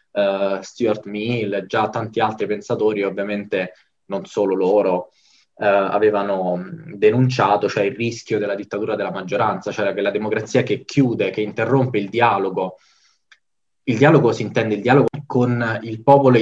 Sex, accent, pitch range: male, native, 100-125 Hz